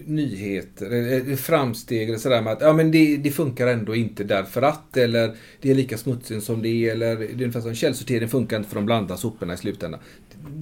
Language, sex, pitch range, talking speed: Swedish, male, 110-150 Hz, 215 wpm